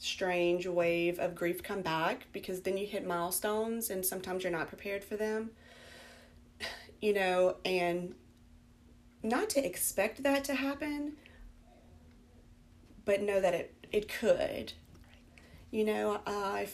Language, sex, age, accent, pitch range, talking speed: English, female, 30-49, American, 115-190 Hz, 130 wpm